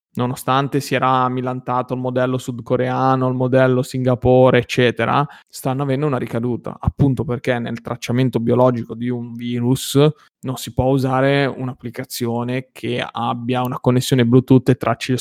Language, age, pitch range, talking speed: Italian, 20-39, 125-140 Hz, 140 wpm